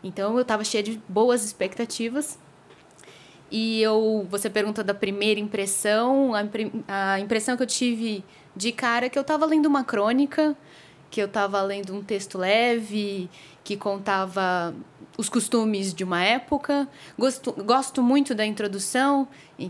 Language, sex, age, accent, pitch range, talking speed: Portuguese, female, 20-39, Brazilian, 195-235 Hz, 145 wpm